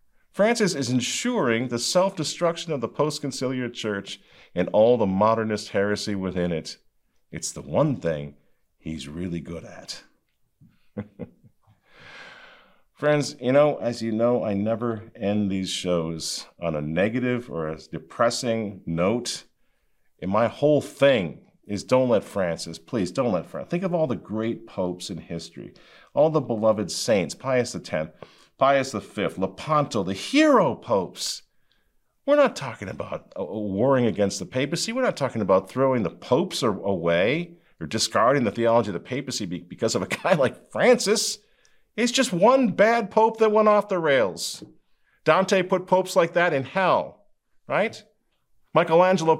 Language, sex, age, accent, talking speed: English, male, 50-69, American, 150 wpm